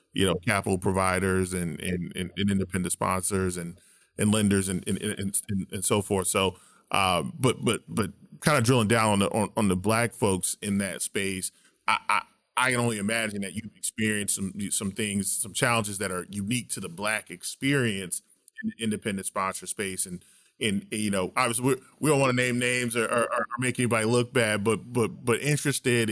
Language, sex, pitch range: English, male, 100-125 Hz